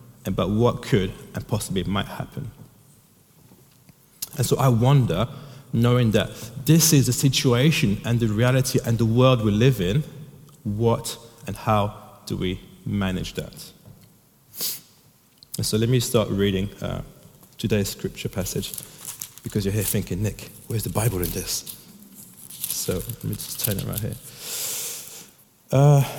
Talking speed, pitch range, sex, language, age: 140 wpm, 115-145 Hz, male, English, 30-49